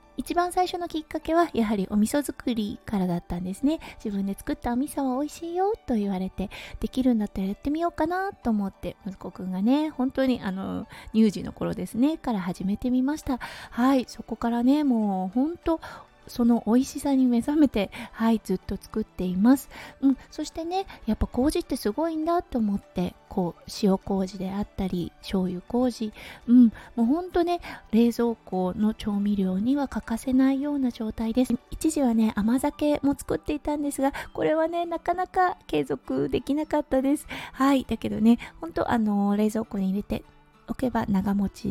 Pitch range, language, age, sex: 205-285 Hz, Japanese, 20-39, female